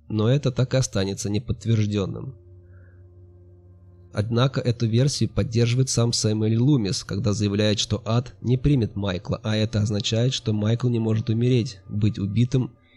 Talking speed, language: 140 wpm, Russian